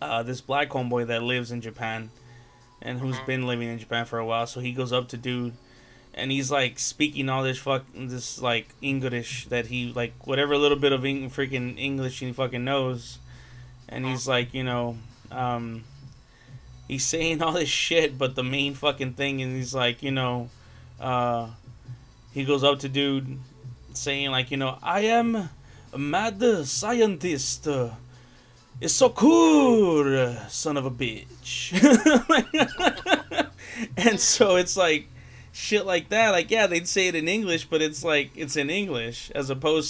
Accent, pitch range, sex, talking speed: American, 125-150 Hz, male, 165 wpm